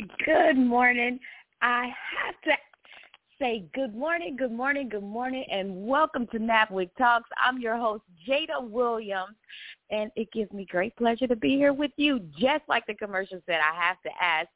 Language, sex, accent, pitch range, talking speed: English, female, American, 190-260 Hz, 175 wpm